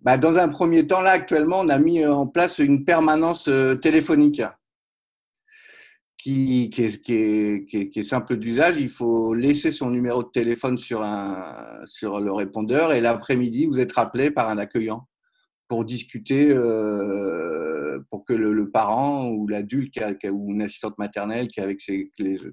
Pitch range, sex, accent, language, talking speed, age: 105-140 Hz, male, French, French, 180 wpm, 50-69